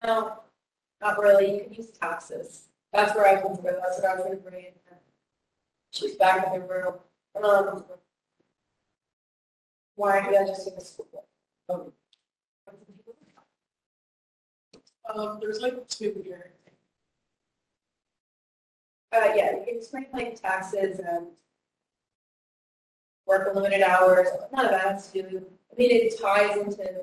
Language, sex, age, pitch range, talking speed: English, female, 20-39, 190-240 Hz, 125 wpm